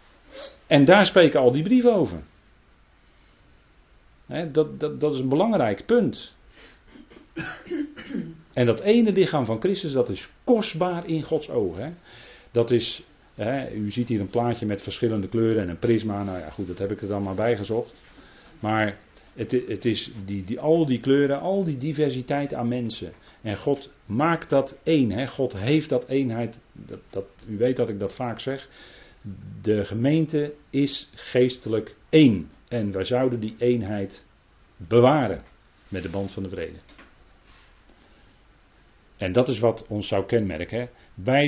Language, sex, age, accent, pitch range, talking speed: Dutch, male, 40-59, Dutch, 100-135 Hz, 160 wpm